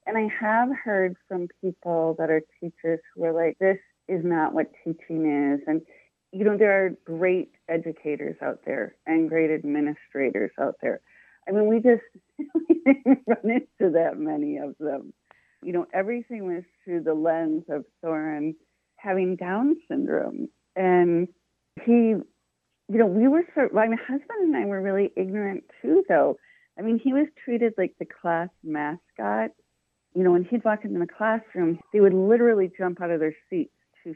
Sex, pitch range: female, 170-240 Hz